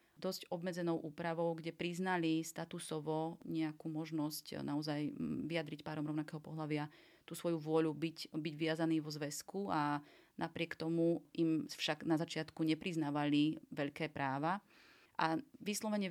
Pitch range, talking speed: 155-175 Hz, 125 wpm